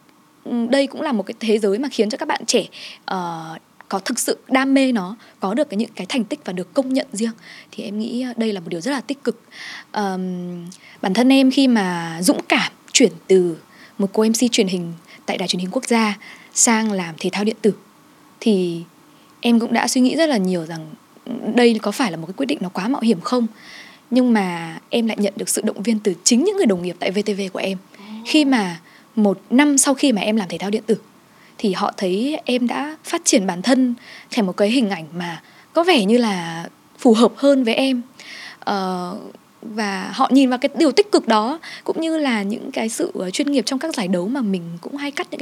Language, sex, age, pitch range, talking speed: Vietnamese, female, 20-39, 200-270 Hz, 230 wpm